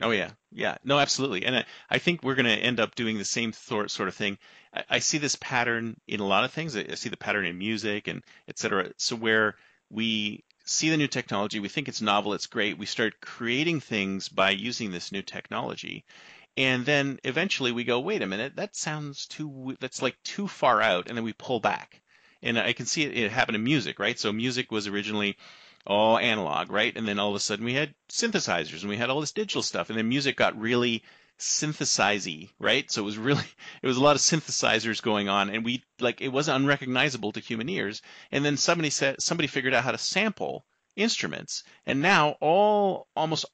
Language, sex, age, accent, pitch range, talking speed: English, male, 40-59, American, 110-145 Hz, 220 wpm